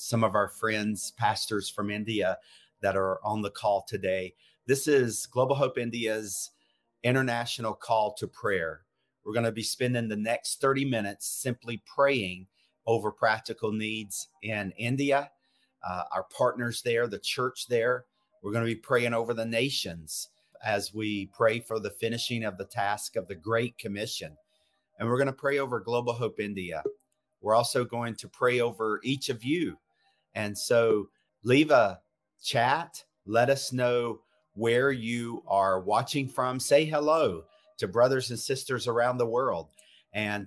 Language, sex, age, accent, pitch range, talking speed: English, male, 40-59, American, 105-130 Hz, 160 wpm